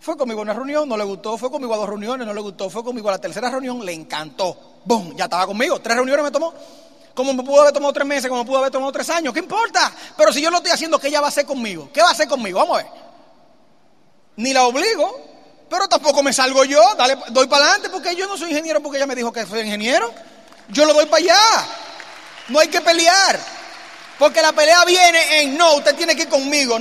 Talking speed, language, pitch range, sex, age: 255 wpm, Spanish, 245-320 Hz, male, 30-49